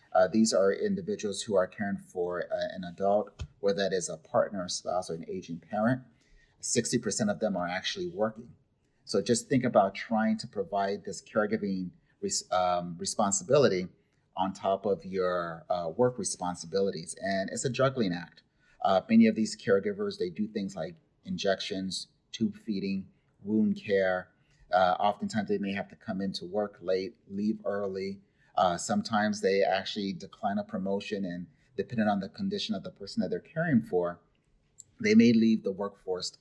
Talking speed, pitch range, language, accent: 165 wpm, 95-140 Hz, English, American